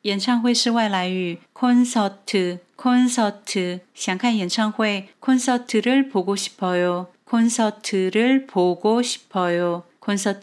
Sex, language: female, Chinese